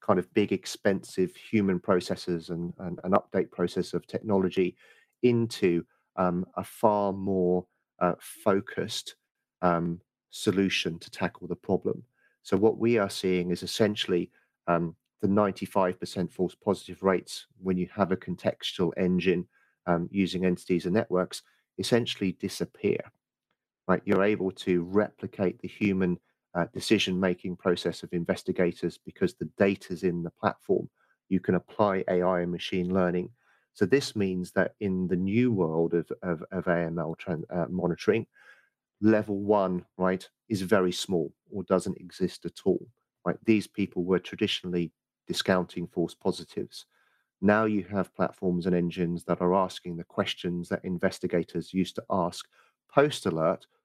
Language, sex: English, male